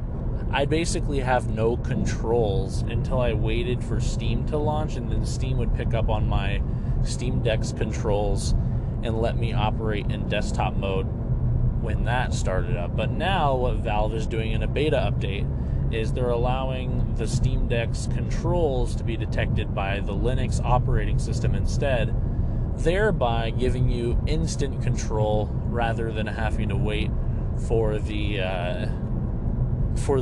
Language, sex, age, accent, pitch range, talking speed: English, male, 30-49, American, 110-125 Hz, 145 wpm